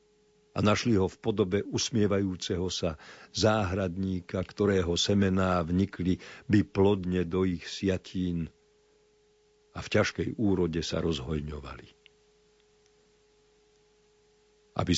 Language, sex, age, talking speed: Slovak, male, 50-69, 90 wpm